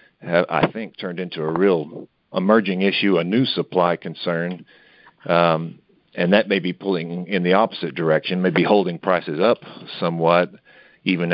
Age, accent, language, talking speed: 50-69, American, English, 155 wpm